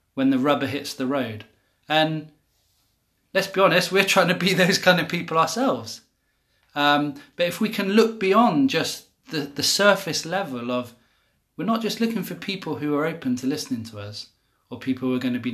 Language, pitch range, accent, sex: English, 130-190 Hz, British, male